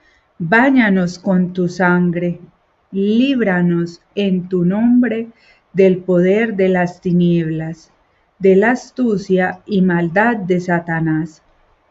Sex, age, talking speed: female, 40-59, 100 wpm